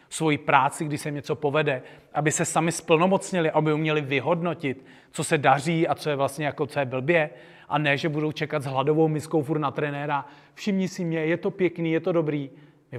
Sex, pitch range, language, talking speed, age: male, 140-175 Hz, Czech, 210 wpm, 40-59